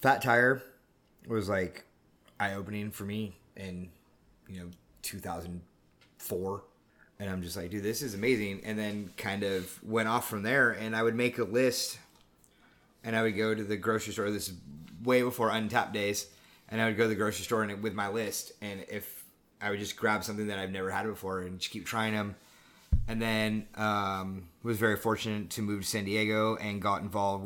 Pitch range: 95-110 Hz